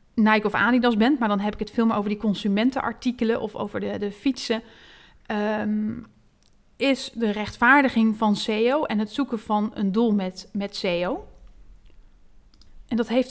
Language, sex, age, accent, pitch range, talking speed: Dutch, female, 30-49, Dutch, 210-245 Hz, 165 wpm